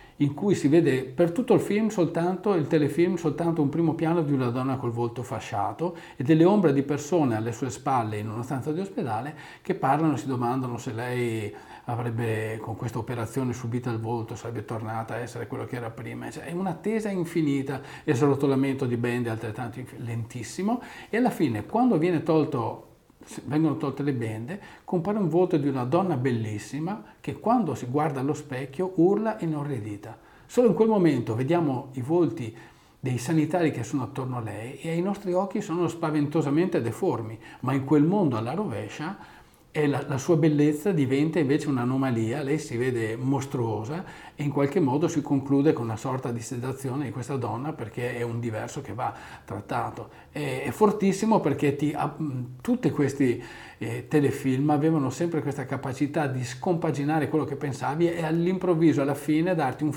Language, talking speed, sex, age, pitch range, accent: Italian, 175 wpm, male, 40-59, 125-165 Hz, native